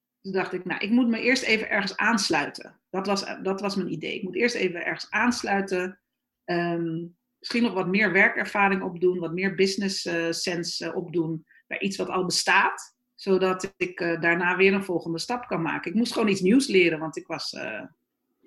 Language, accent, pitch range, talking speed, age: Dutch, Dutch, 175-245 Hz, 195 wpm, 40-59